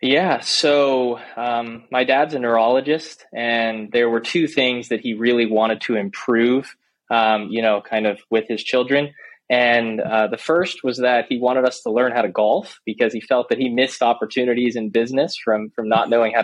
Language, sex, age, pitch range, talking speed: English, male, 20-39, 110-125 Hz, 195 wpm